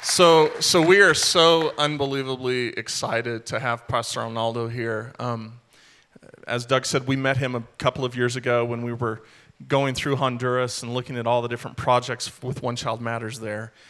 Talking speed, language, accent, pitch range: 180 wpm, English, American, 115-130 Hz